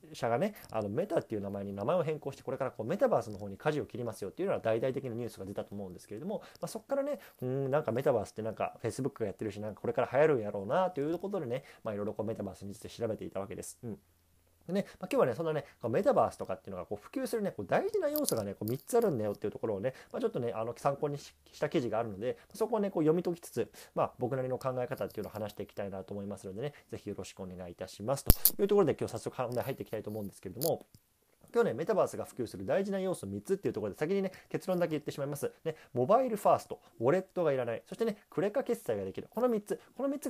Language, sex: Japanese, male